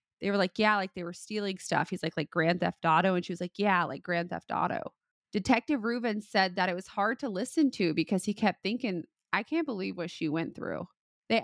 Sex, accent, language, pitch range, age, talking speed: female, American, English, 170-215 Hz, 20-39, 240 wpm